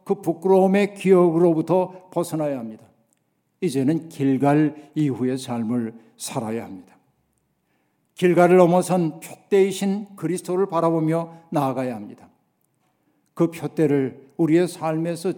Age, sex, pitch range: 60-79, male, 140-175 Hz